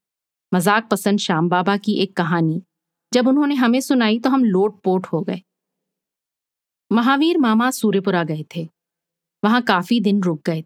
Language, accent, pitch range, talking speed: Hindi, native, 175-225 Hz, 150 wpm